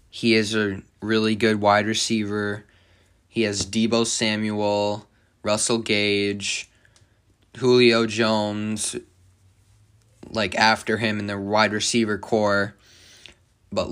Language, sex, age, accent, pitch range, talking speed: English, male, 20-39, American, 100-115 Hz, 105 wpm